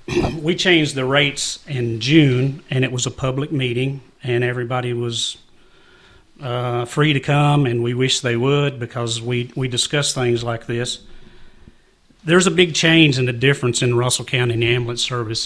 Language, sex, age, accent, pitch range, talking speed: English, male, 40-59, American, 120-145 Hz, 175 wpm